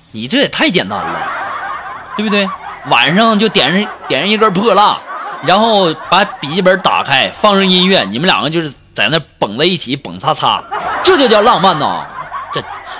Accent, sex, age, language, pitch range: native, male, 20-39, Chinese, 170-245 Hz